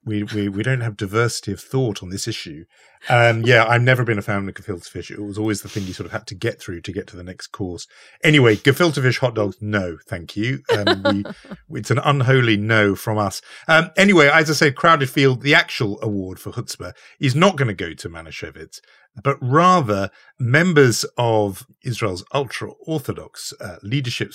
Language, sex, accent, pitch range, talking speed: English, male, British, 105-140 Hz, 205 wpm